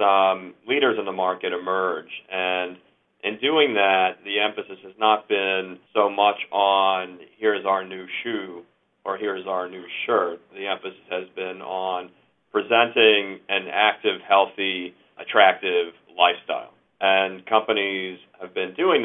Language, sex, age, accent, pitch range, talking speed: English, male, 40-59, American, 95-105 Hz, 135 wpm